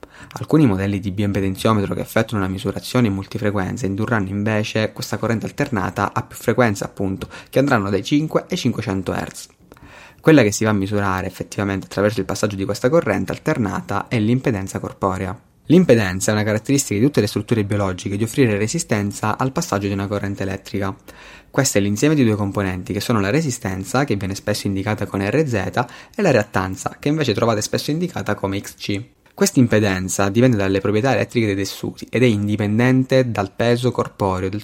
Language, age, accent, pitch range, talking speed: Italian, 20-39, native, 100-120 Hz, 175 wpm